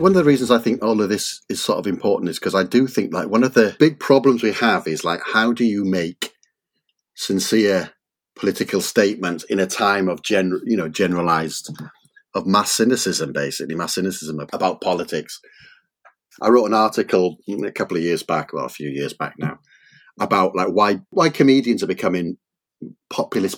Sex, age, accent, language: male, 30-49, British, English